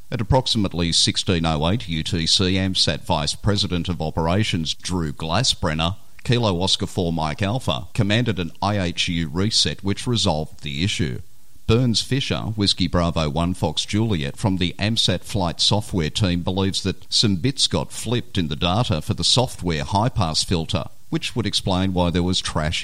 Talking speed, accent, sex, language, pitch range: 150 wpm, Australian, male, English, 85-110 Hz